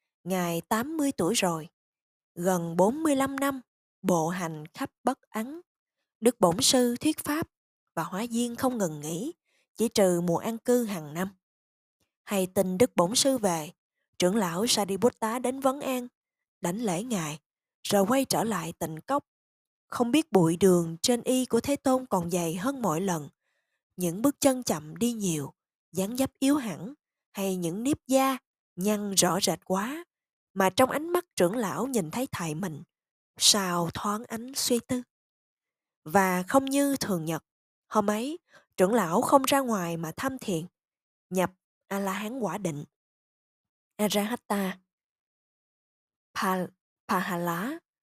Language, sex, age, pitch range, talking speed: Vietnamese, female, 20-39, 175-255 Hz, 150 wpm